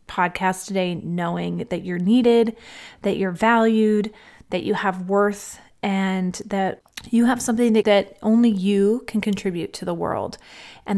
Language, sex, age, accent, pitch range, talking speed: English, female, 30-49, American, 185-225 Hz, 155 wpm